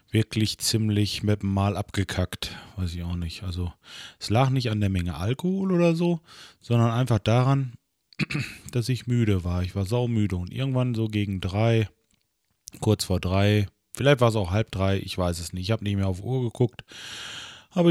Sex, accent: male, German